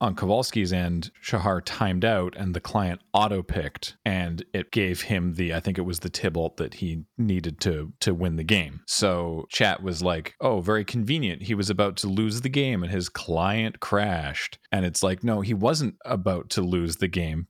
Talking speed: 200 wpm